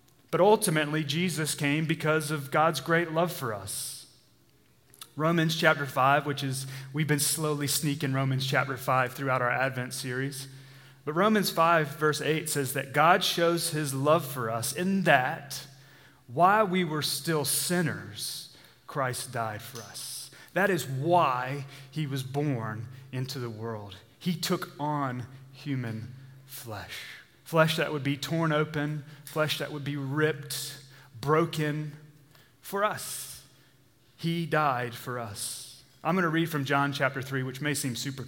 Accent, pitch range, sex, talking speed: American, 125-150 Hz, male, 150 wpm